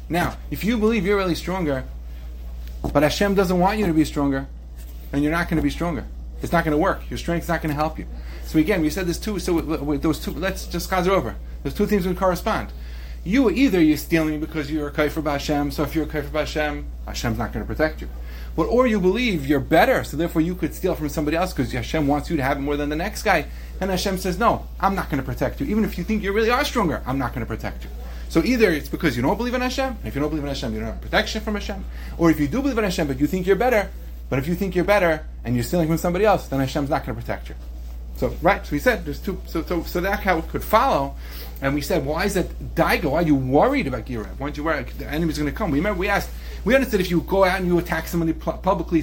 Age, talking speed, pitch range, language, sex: 30-49, 285 wpm, 130-185 Hz, English, male